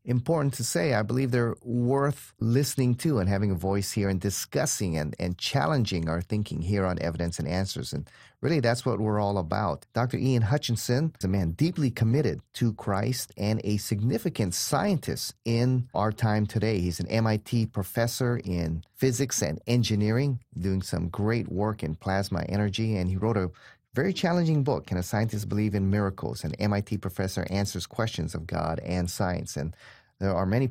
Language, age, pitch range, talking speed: English, 30-49, 95-120 Hz, 180 wpm